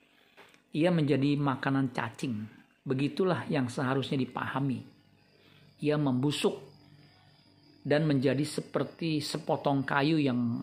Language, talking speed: Indonesian, 90 wpm